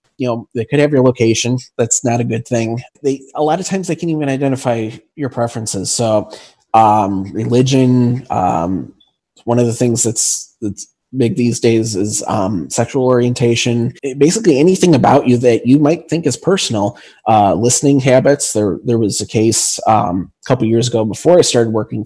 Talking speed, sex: 190 wpm, male